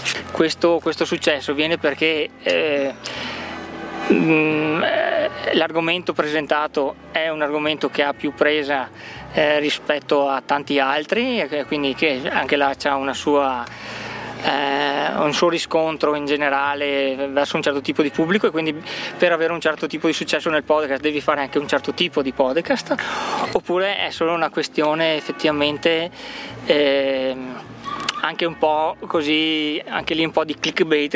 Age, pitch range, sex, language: 20-39, 145-165 Hz, male, Italian